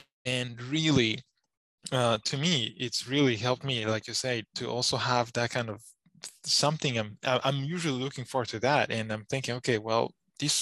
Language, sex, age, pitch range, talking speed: English, male, 20-39, 115-140 Hz, 180 wpm